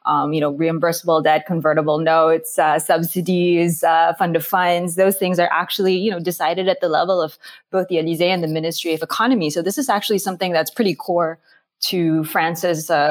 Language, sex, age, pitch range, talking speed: English, female, 20-39, 165-205 Hz, 195 wpm